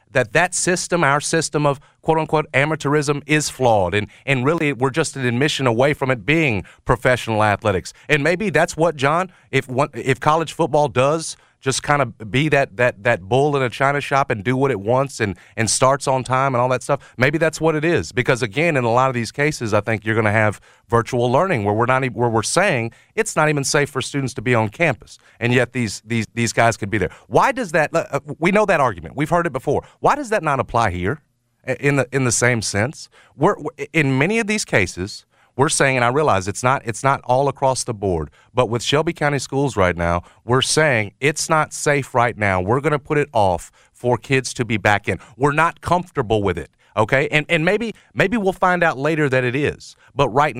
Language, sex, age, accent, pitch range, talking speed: English, male, 40-59, American, 115-150 Hz, 230 wpm